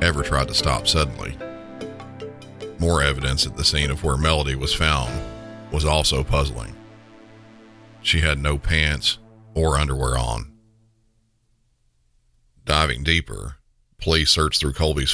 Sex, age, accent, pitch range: male, 40-59, American, 65-80 Hz